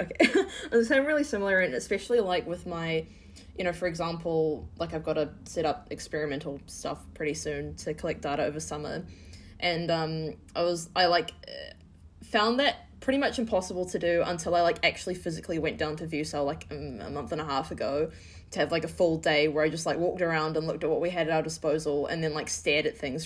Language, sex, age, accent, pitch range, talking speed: English, female, 20-39, Australian, 155-180 Hz, 215 wpm